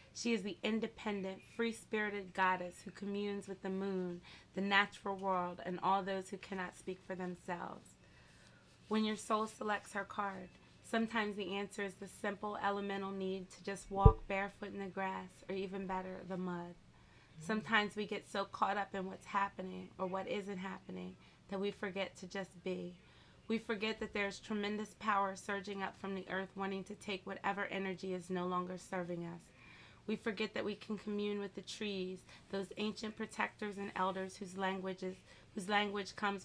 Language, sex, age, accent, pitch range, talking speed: English, female, 30-49, American, 185-205 Hz, 175 wpm